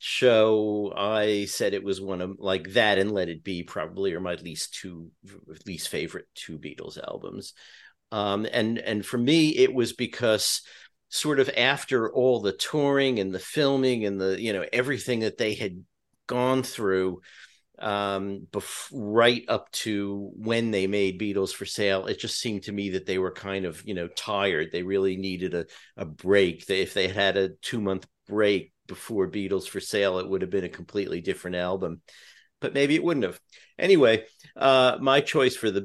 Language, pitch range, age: English, 95-120 Hz, 50-69